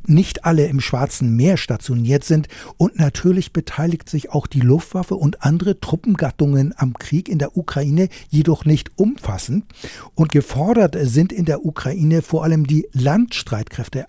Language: German